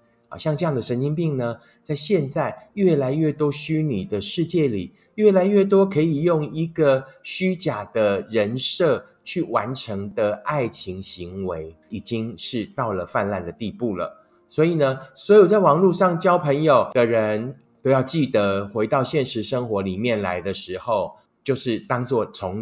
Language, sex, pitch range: Chinese, male, 110-160 Hz